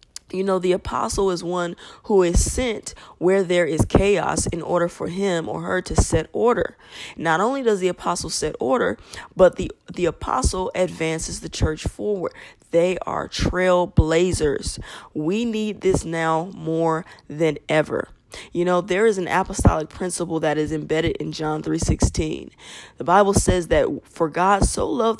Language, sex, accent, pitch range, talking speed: English, female, American, 160-195 Hz, 165 wpm